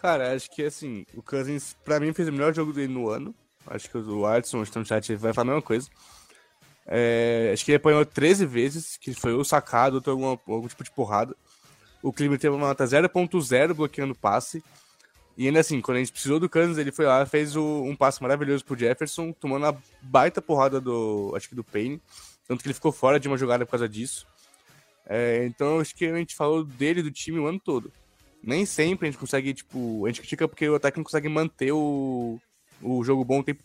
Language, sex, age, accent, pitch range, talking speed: Portuguese, male, 20-39, Brazilian, 125-155 Hz, 225 wpm